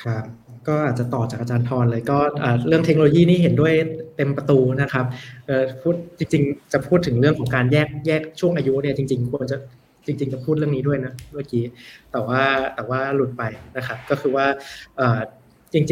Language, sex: Thai, male